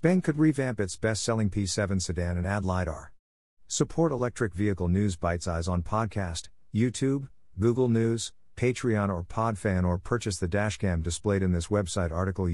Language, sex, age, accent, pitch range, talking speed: English, male, 50-69, American, 90-115 Hz, 155 wpm